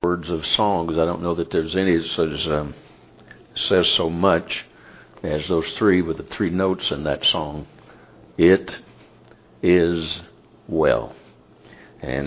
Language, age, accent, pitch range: English, 60-79, American, 75-90 Hz